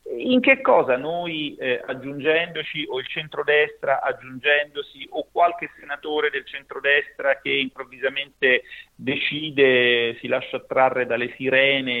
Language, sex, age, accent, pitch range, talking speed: Italian, male, 40-59, native, 130-215 Hz, 115 wpm